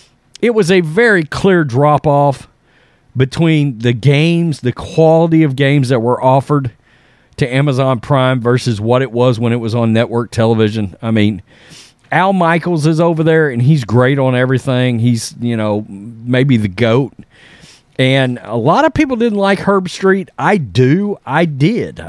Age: 40-59